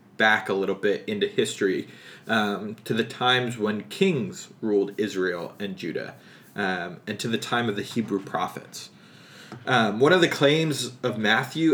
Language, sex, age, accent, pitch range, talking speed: English, male, 20-39, American, 105-130 Hz, 165 wpm